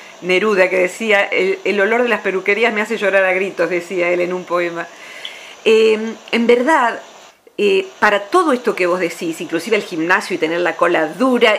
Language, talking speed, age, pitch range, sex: Spanish, 190 wpm, 50-69, 180-255 Hz, female